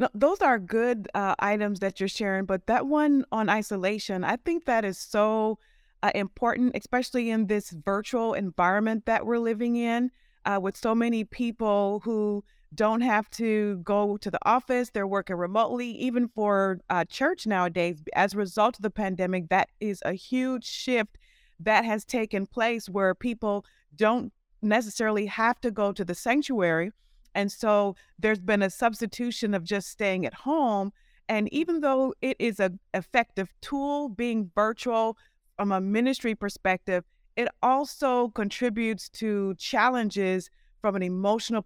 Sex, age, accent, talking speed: female, 30-49, American, 155 wpm